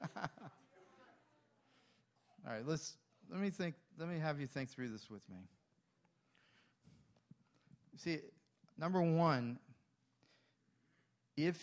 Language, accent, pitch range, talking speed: English, American, 120-160 Hz, 100 wpm